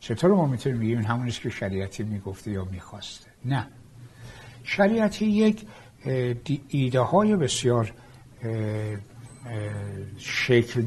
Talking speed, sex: 95 wpm, male